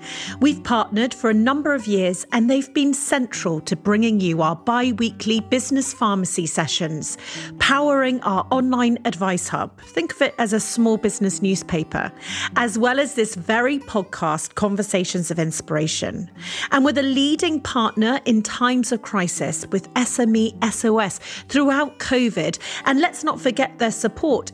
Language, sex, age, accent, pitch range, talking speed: English, female, 40-59, British, 195-260 Hz, 150 wpm